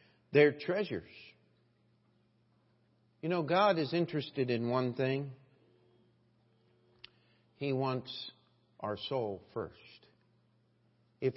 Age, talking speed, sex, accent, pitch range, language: 50-69, 85 wpm, male, American, 130-205 Hz, English